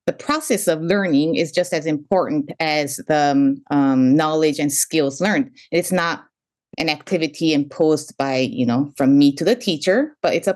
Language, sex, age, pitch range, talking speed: English, female, 20-39, 155-215 Hz, 175 wpm